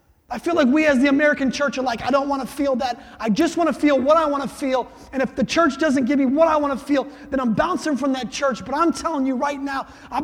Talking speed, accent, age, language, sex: 300 wpm, American, 30-49, English, male